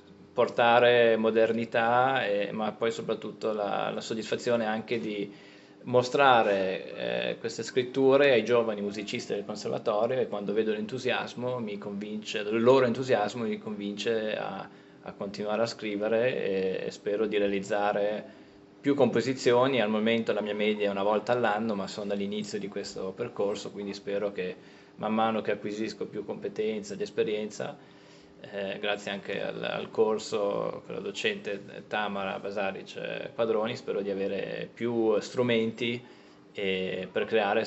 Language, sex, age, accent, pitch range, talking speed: Italian, male, 20-39, native, 100-125 Hz, 140 wpm